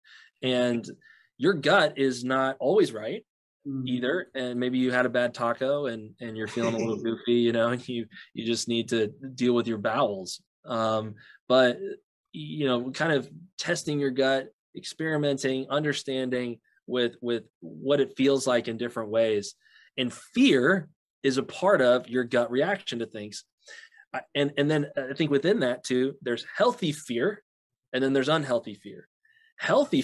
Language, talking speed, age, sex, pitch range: English, 165 wpm, 20-39, male, 115-145 Hz